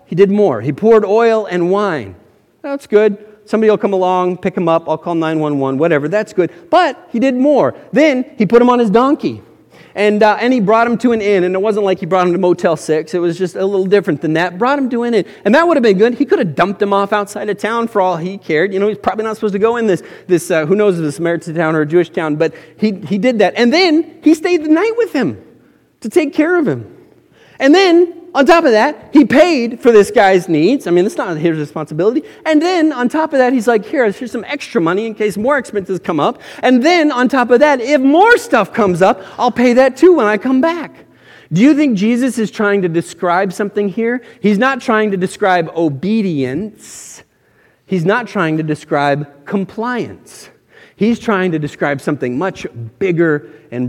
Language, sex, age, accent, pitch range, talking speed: English, male, 40-59, American, 175-250 Hz, 235 wpm